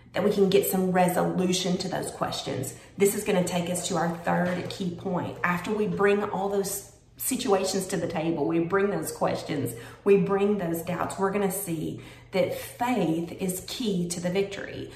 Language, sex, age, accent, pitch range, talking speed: English, female, 30-49, American, 185-225 Hz, 185 wpm